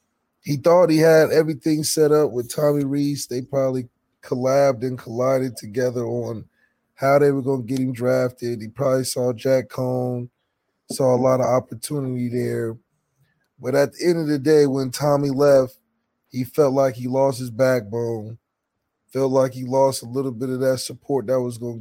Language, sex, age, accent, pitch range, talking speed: English, male, 20-39, American, 120-140 Hz, 180 wpm